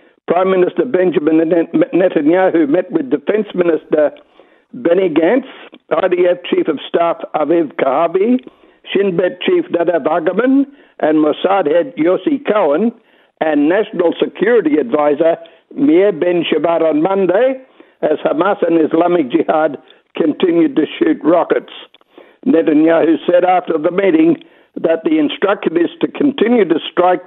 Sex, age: male, 60-79